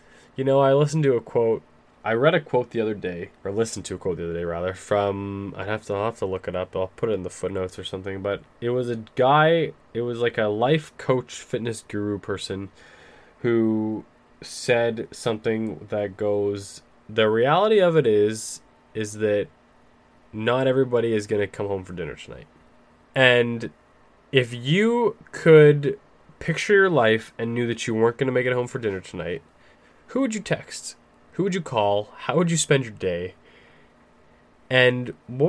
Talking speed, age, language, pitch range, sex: 185 wpm, 20-39, English, 105-135 Hz, male